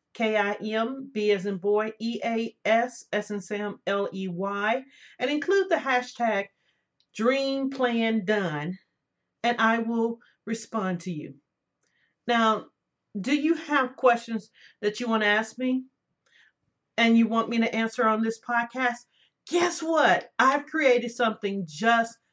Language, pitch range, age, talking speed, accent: English, 200-260 Hz, 40-59, 150 wpm, American